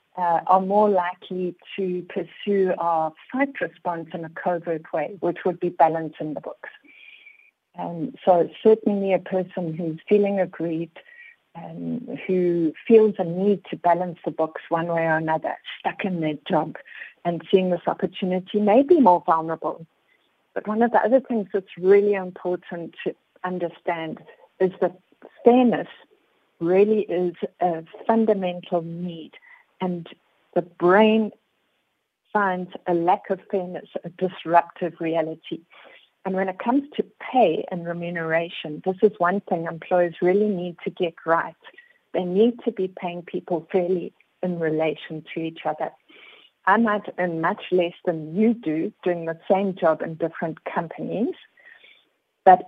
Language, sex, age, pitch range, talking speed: English, female, 50-69, 170-210 Hz, 145 wpm